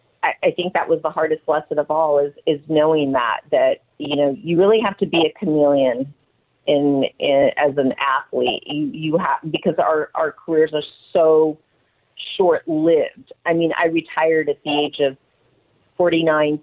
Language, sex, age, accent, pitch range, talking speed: English, female, 40-59, American, 145-165 Hz, 175 wpm